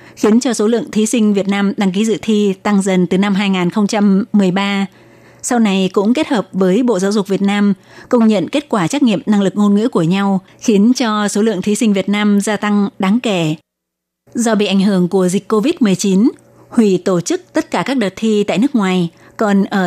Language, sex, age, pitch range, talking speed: Vietnamese, female, 20-39, 190-225 Hz, 215 wpm